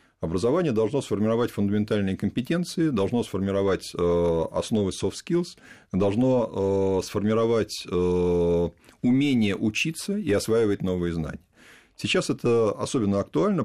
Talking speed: 110 wpm